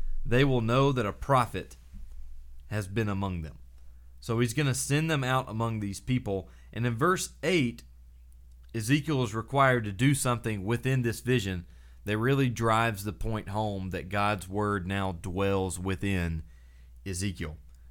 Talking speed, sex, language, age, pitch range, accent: 155 wpm, male, English, 30-49, 90-125 Hz, American